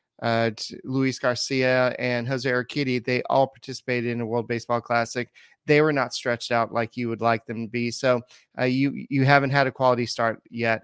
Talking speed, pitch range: 200 wpm, 120-135 Hz